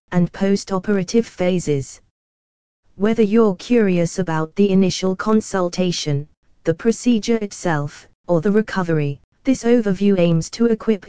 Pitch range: 170-210 Hz